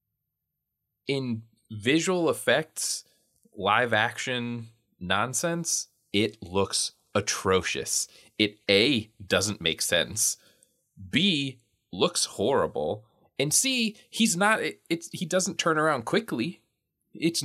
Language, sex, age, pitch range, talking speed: English, male, 20-39, 95-130 Hz, 95 wpm